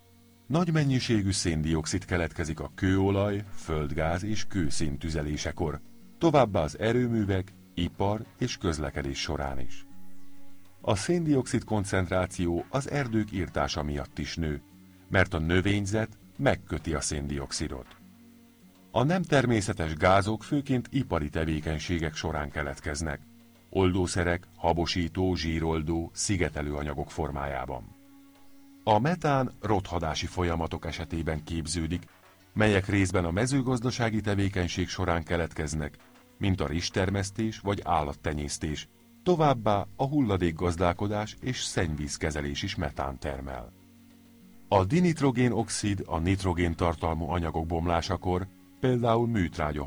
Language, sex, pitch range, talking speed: Hungarian, male, 80-110 Hz, 100 wpm